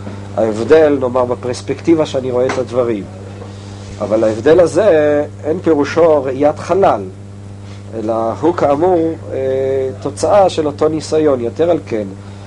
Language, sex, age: Hebrew, male, 50-69